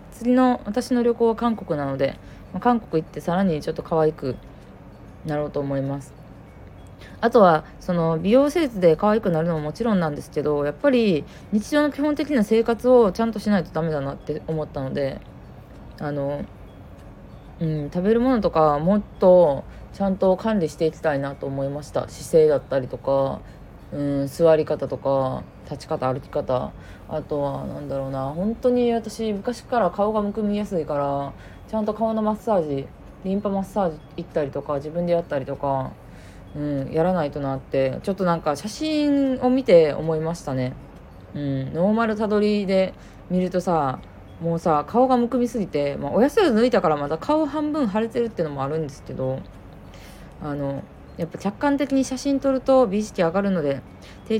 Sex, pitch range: female, 145-220 Hz